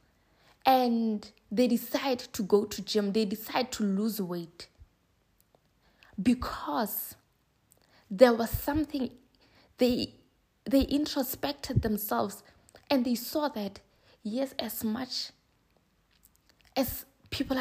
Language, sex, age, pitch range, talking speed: English, female, 20-39, 215-260 Hz, 100 wpm